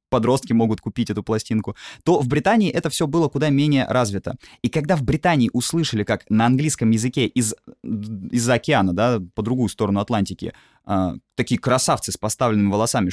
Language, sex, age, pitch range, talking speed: Russian, male, 20-39, 105-145 Hz, 170 wpm